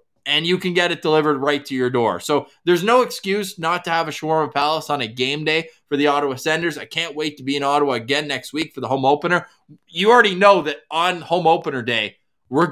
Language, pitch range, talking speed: English, 135-180 Hz, 240 wpm